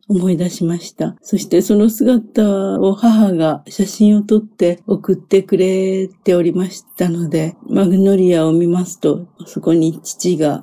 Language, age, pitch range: Japanese, 50-69, 175-210 Hz